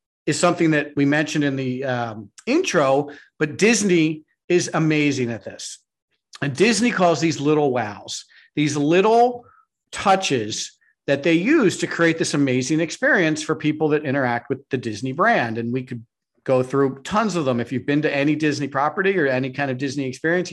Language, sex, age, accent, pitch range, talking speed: English, male, 40-59, American, 135-185 Hz, 180 wpm